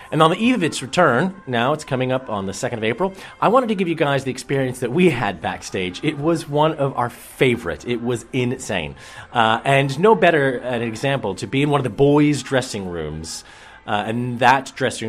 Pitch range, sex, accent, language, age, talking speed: 105-155 Hz, male, American, English, 30-49, 225 wpm